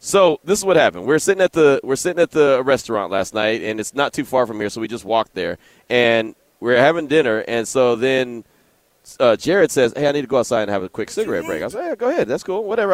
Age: 30-49